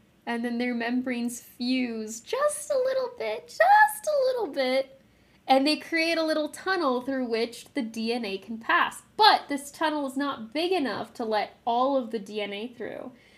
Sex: female